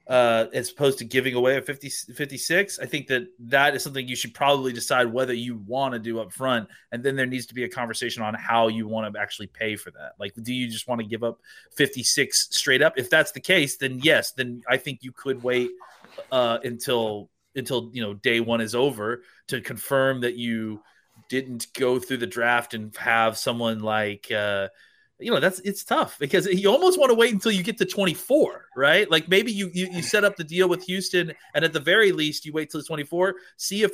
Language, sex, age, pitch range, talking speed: English, male, 30-49, 115-155 Hz, 230 wpm